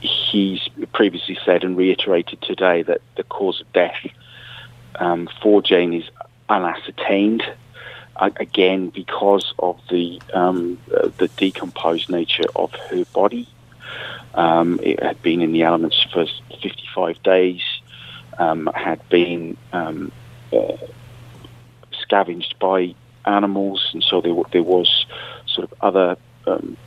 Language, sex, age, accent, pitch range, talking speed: English, male, 40-59, British, 90-120 Hz, 125 wpm